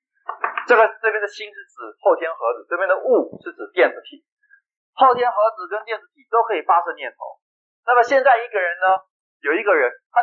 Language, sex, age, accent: Chinese, male, 30-49, native